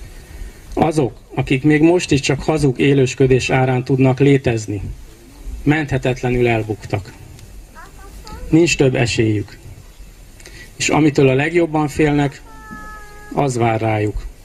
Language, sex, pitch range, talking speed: Hungarian, male, 115-140 Hz, 100 wpm